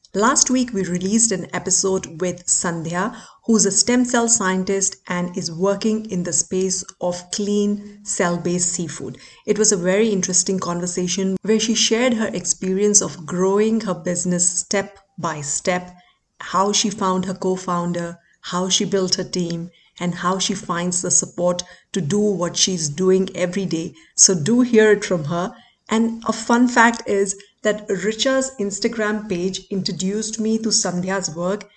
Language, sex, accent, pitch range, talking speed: Hindi, female, native, 180-210 Hz, 160 wpm